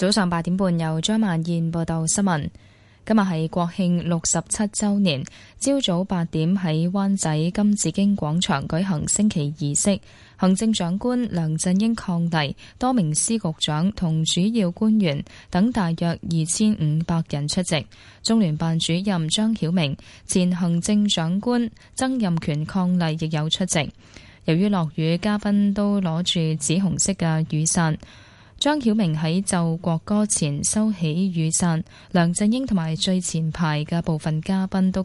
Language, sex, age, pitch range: Chinese, female, 10-29, 160-200 Hz